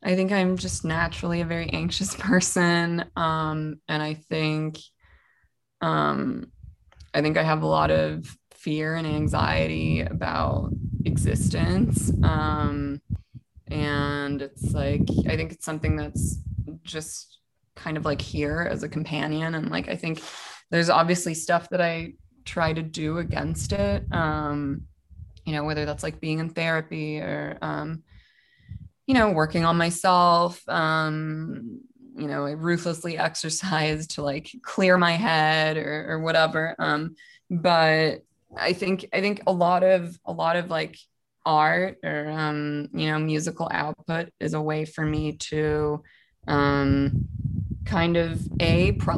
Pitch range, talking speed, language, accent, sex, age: 145-170 Hz, 145 wpm, English, American, female, 20-39